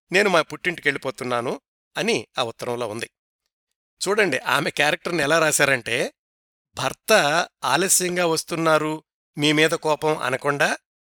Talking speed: 105 wpm